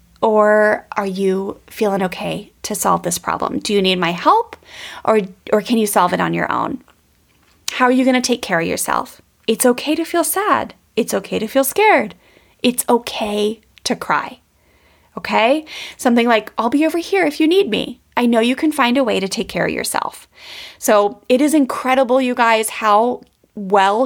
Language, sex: English, female